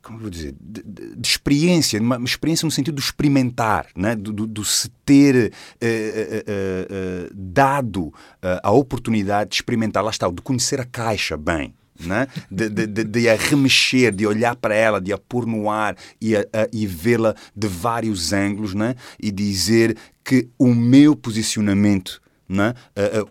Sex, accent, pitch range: male, Brazilian, 100-125 Hz